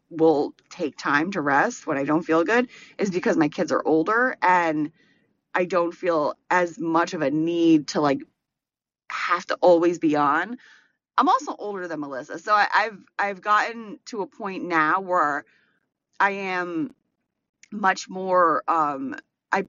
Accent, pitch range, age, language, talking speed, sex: American, 175-245 Hz, 30-49, English, 160 wpm, female